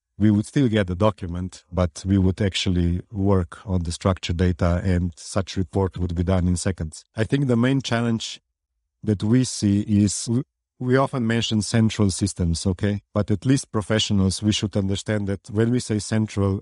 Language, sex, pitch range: English, male, 95-110 Hz